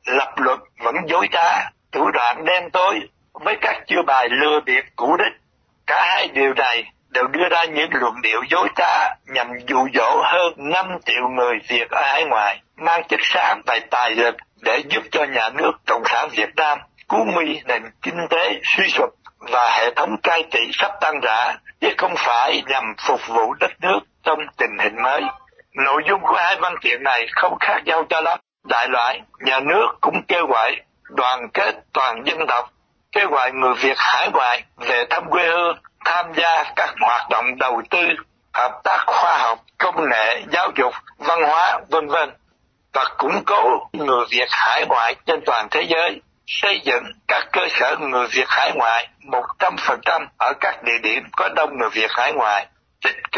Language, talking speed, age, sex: Vietnamese, 185 wpm, 60-79, male